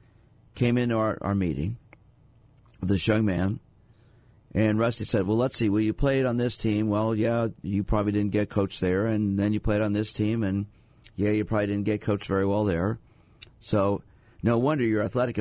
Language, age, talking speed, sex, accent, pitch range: English, 50-69, 200 wpm, male, American, 100-115 Hz